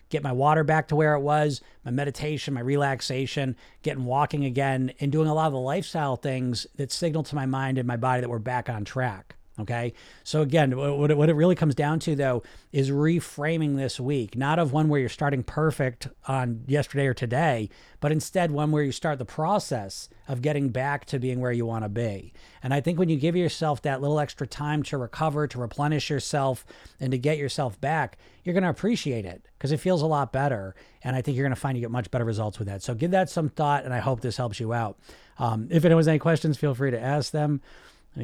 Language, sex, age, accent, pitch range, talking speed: English, male, 40-59, American, 125-155 Hz, 235 wpm